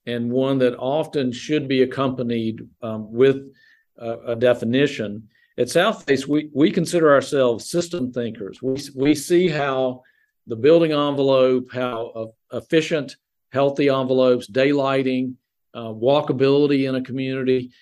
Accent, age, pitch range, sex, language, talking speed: American, 50-69, 120-140 Hz, male, English, 125 wpm